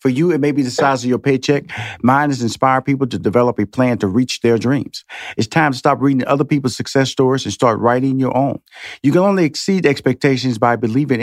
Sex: male